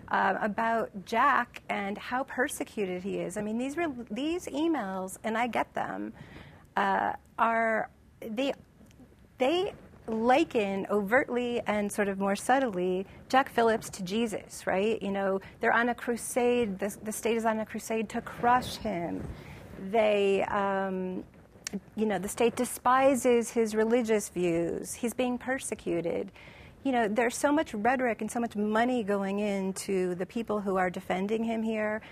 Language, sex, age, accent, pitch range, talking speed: English, female, 40-59, American, 190-240 Hz, 155 wpm